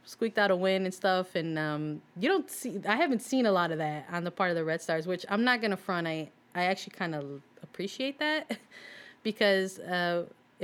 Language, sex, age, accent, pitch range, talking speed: English, female, 20-39, American, 155-190 Hz, 215 wpm